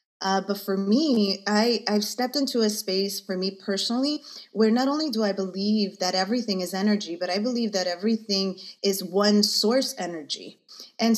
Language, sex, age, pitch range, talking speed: English, female, 30-49, 190-220 Hz, 170 wpm